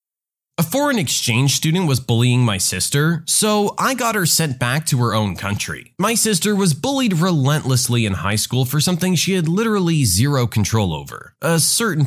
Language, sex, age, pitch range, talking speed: English, male, 20-39, 110-175 Hz, 180 wpm